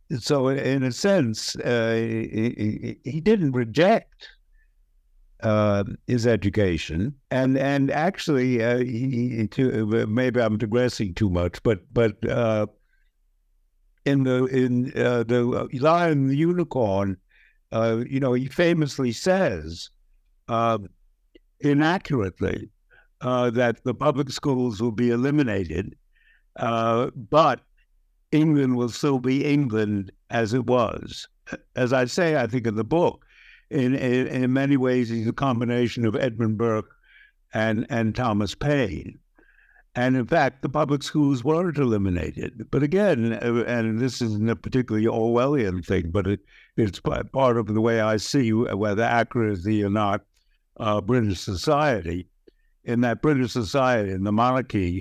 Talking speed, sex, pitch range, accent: 135 wpm, male, 105-130 Hz, American